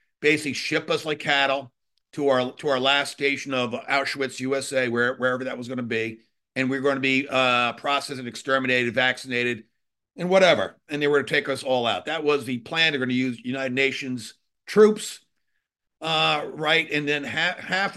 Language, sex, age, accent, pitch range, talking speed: English, male, 50-69, American, 130-150 Hz, 195 wpm